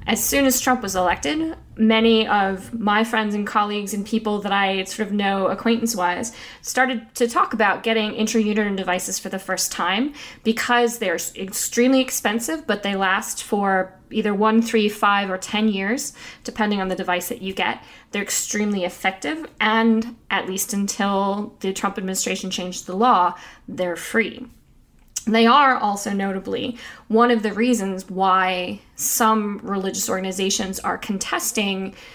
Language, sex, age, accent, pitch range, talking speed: English, female, 10-29, American, 190-230 Hz, 155 wpm